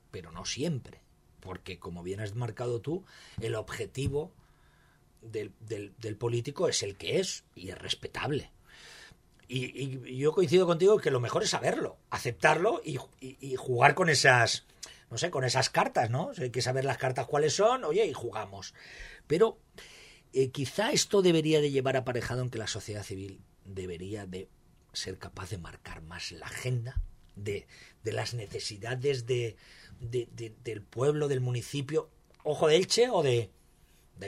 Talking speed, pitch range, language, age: 170 wpm, 115-145 Hz, Spanish, 40-59